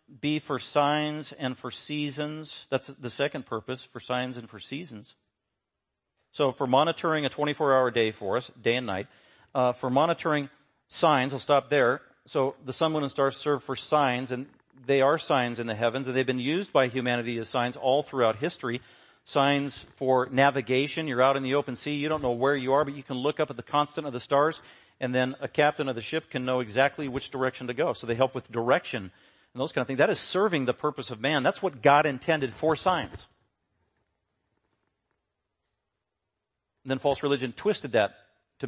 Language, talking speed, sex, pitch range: English, 200 wpm, male, 120-145 Hz